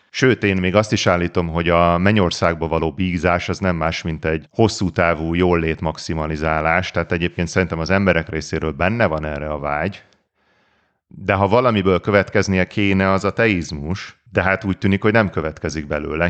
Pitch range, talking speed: 85-100 Hz, 175 wpm